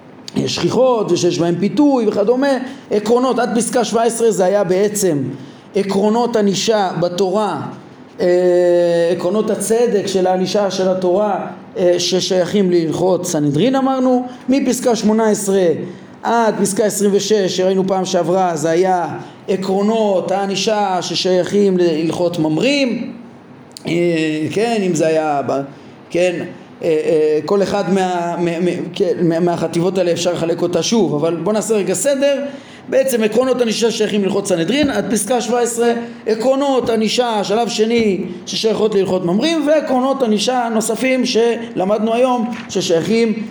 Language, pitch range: Hebrew, 175-230 Hz